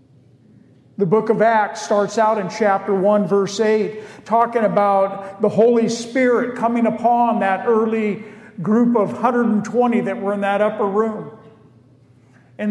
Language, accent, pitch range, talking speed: English, American, 165-225 Hz, 140 wpm